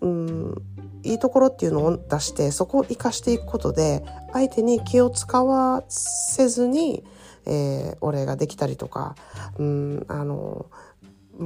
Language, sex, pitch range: Japanese, female, 155-220 Hz